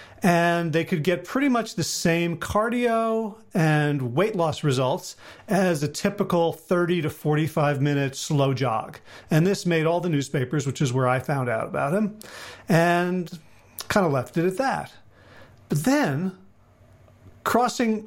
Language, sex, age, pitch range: English, male, 40-59, 150-200 Hz